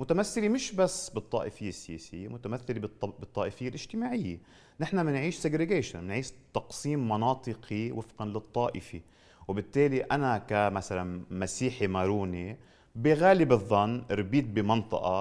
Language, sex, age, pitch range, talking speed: Arabic, male, 30-49, 95-160 Hz, 95 wpm